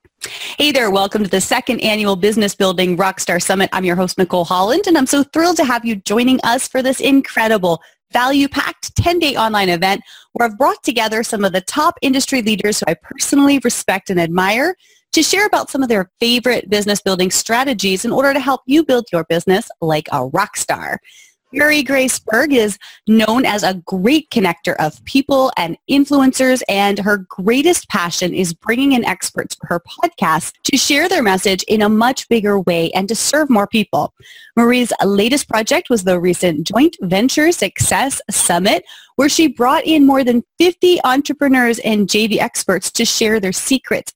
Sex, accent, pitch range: female, American, 195-280 Hz